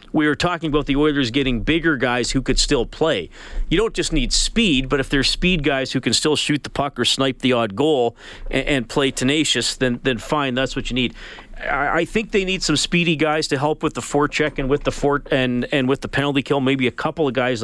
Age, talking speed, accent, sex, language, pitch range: 40-59, 240 wpm, American, male, English, 115-150 Hz